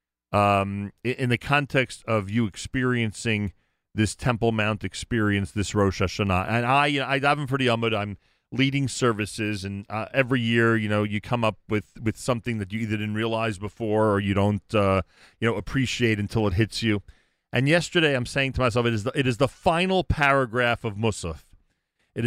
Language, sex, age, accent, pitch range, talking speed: English, male, 40-59, American, 110-155 Hz, 190 wpm